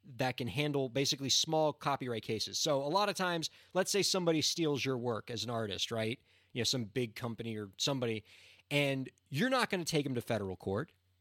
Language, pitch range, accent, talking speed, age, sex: English, 110-155 Hz, American, 210 wpm, 30-49, male